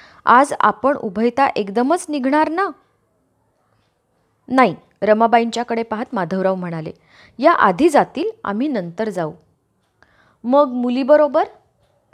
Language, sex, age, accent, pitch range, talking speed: Marathi, female, 20-39, native, 180-255 Hz, 95 wpm